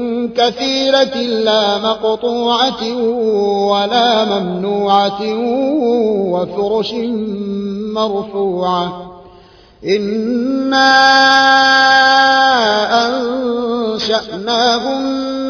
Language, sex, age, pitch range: Arabic, male, 30-49, 205-265 Hz